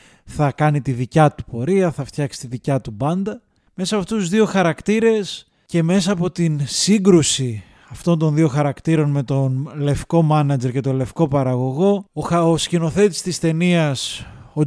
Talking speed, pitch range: 165 wpm, 135-170 Hz